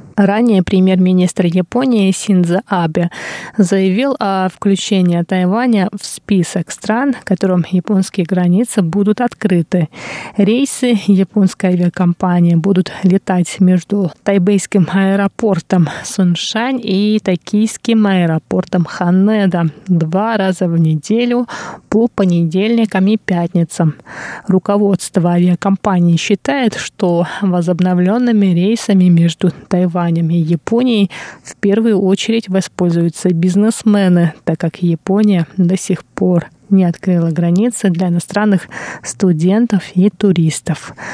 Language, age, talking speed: Russian, 20-39, 95 wpm